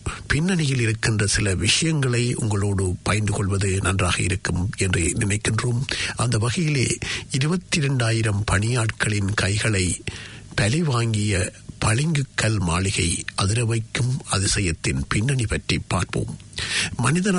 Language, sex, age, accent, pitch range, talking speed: English, male, 60-79, Indian, 100-130 Hz, 90 wpm